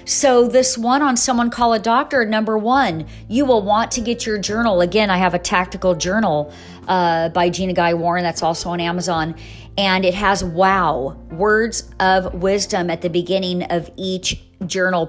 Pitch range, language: 175-245 Hz, English